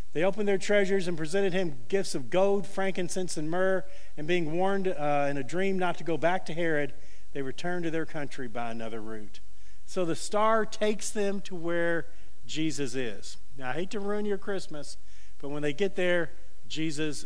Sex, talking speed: male, 195 wpm